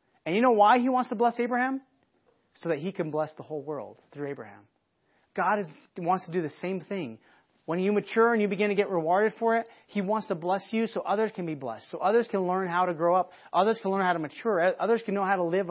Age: 30-49